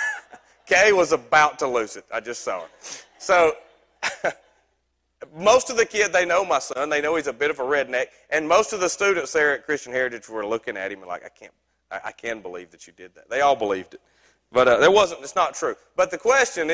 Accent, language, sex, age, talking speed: American, English, male, 40-59, 235 wpm